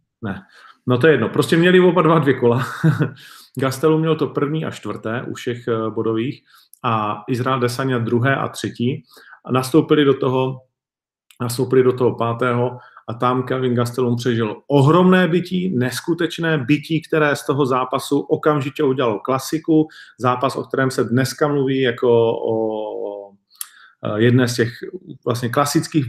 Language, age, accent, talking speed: Czech, 40-59, native, 140 wpm